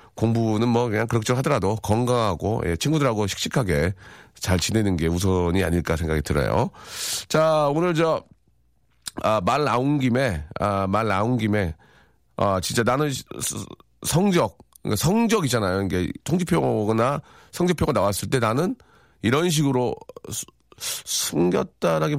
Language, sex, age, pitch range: Korean, male, 40-59, 95-145 Hz